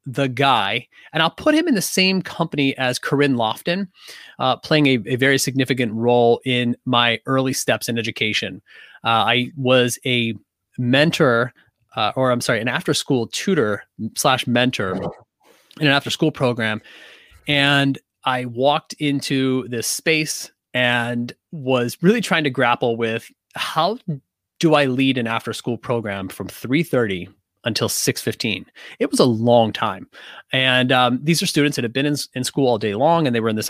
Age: 30-49